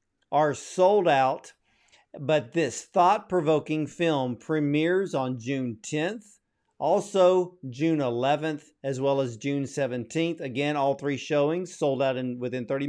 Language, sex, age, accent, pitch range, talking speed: English, male, 50-69, American, 140-180 Hz, 130 wpm